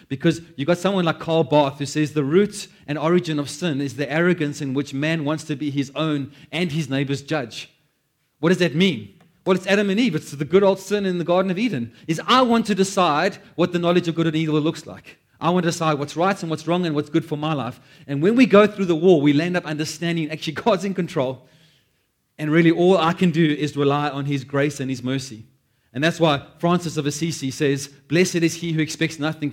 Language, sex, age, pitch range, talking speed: English, male, 30-49, 130-165 Hz, 245 wpm